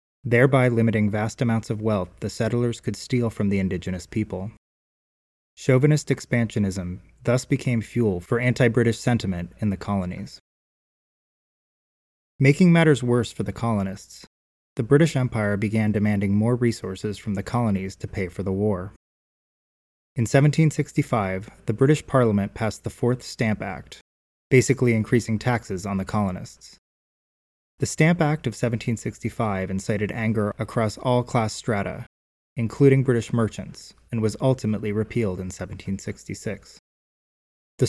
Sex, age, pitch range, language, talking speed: male, 20-39, 95-120 Hz, English, 130 wpm